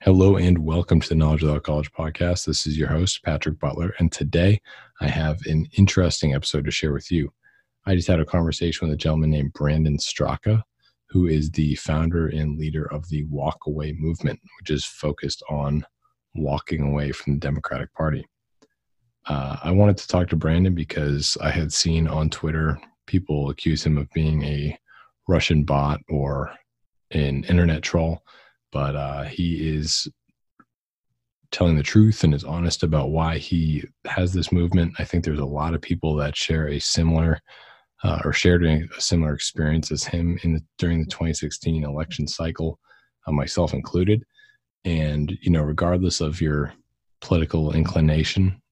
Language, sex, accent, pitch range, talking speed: English, male, American, 75-85 Hz, 170 wpm